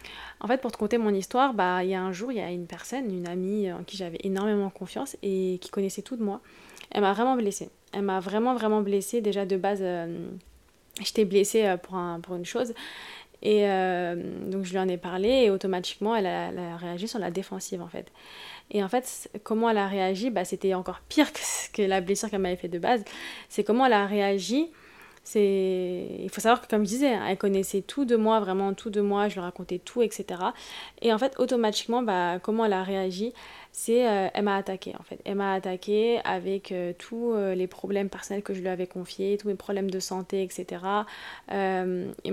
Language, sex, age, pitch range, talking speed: French, female, 20-39, 185-215 Hz, 225 wpm